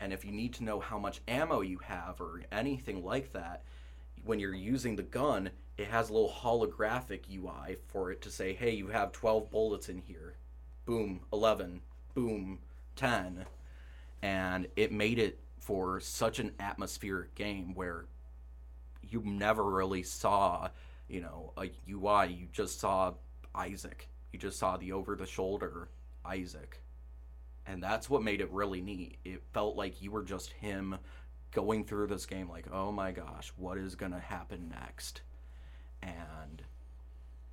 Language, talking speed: English, 160 wpm